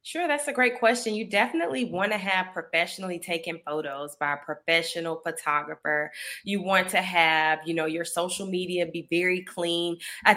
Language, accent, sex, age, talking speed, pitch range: English, American, female, 20-39, 175 wpm, 170-200 Hz